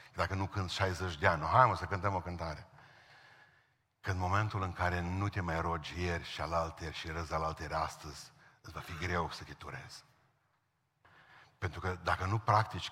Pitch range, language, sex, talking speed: 85-110 Hz, Romanian, male, 190 wpm